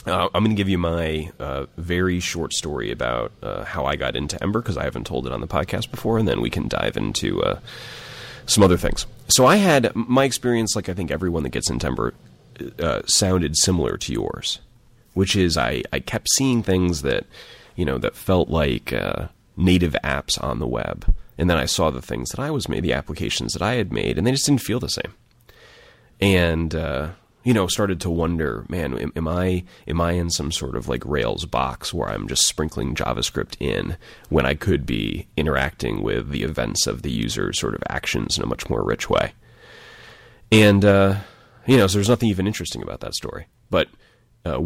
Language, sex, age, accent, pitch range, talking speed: English, male, 30-49, American, 80-110 Hz, 210 wpm